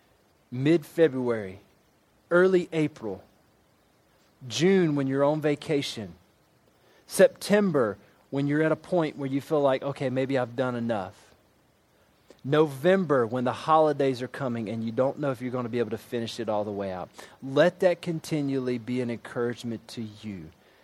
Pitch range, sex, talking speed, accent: 110-140 Hz, male, 155 wpm, American